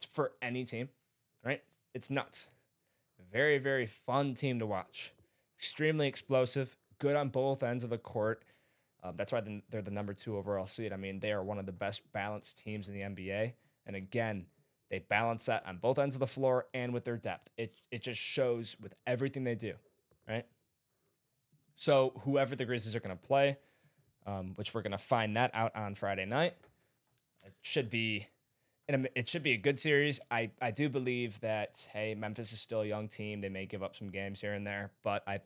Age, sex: 20-39, male